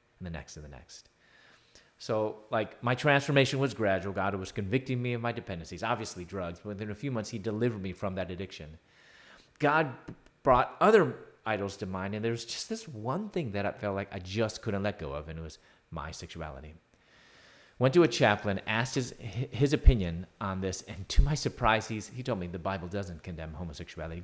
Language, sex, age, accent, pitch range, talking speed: English, male, 30-49, American, 95-125 Hz, 205 wpm